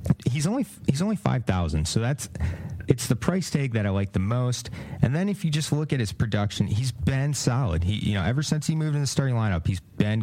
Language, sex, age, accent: English, male, 30-49, American